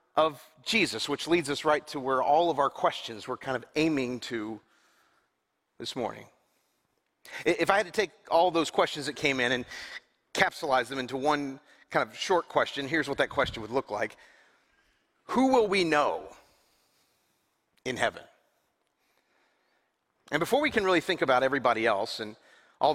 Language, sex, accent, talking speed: English, male, American, 165 wpm